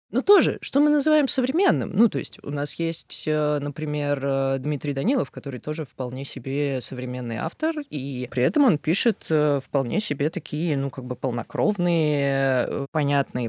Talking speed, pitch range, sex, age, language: 150 wpm, 130-200 Hz, female, 20-39, Russian